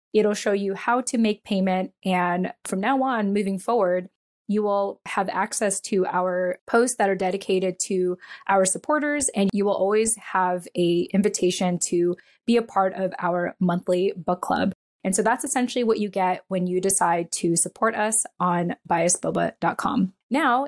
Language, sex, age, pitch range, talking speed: English, female, 20-39, 180-220 Hz, 170 wpm